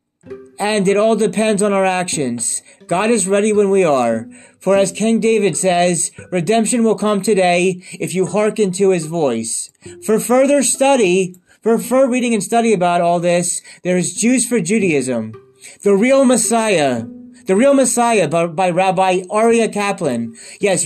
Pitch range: 175-225 Hz